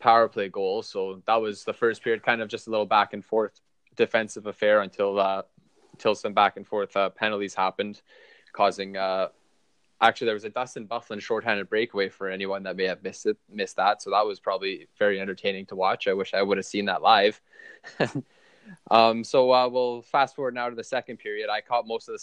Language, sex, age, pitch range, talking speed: English, male, 20-39, 100-135 Hz, 215 wpm